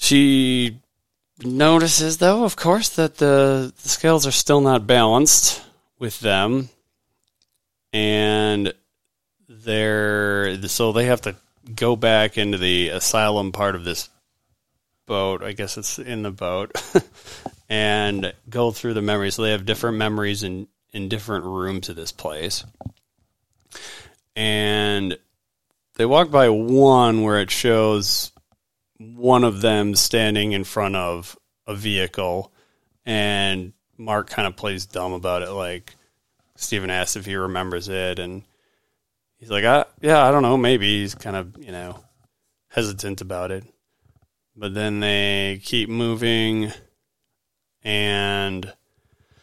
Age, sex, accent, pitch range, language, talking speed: 30-49, male, American, 100-115 Hz, English, 130 wpm